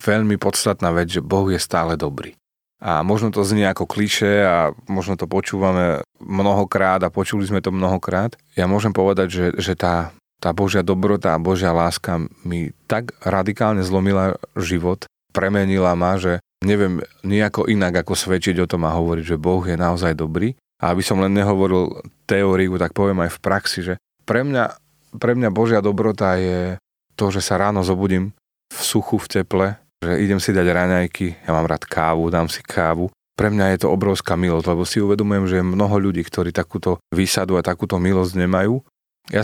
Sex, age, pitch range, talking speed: male, 30-49, 90-100 Hz, 180 wpm